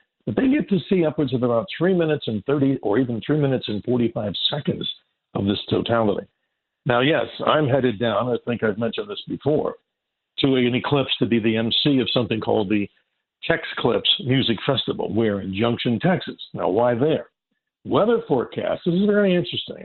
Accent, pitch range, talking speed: American, 110-155 Hz, 180 wpm